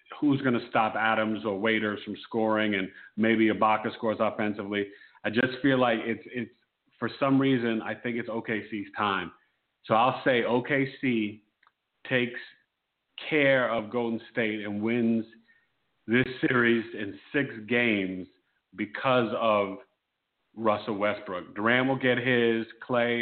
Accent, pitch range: American, 110-135 Hz